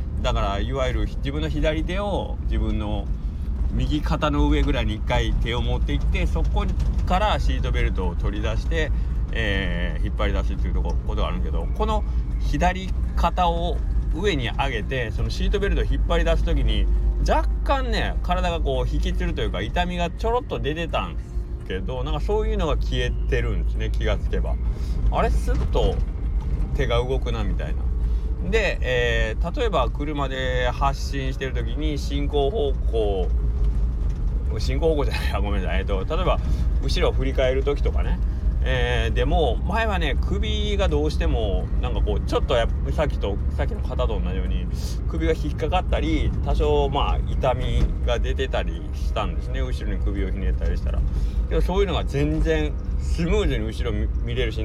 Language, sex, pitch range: Japanese, male, 65-85 Hz